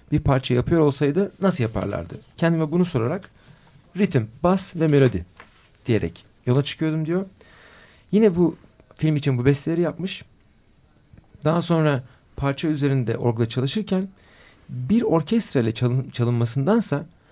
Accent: native